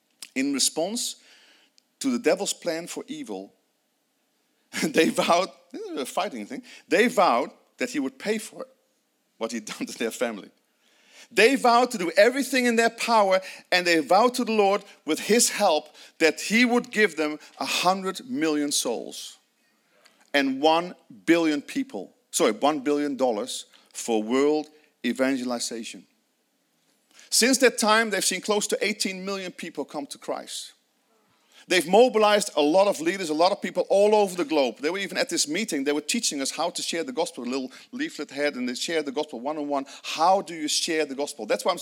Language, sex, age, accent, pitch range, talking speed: English, male, 40-59, Dutch, 155-245 Hz, 180 wpm